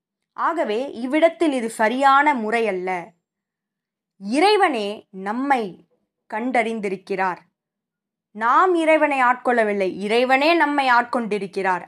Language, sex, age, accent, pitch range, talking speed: Tamil, female, 20-39, native, 200-265 Hz, 75 wpm